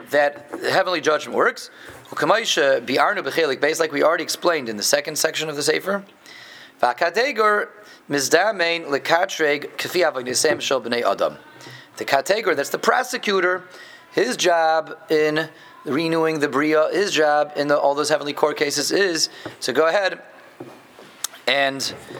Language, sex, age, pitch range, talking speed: English, male, 30-49, 135-175 Hz, 110 wpm